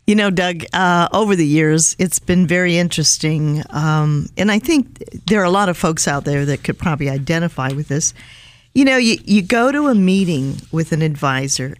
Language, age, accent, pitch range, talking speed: English, 50-69, American, 155-215 Hz, 205 wpm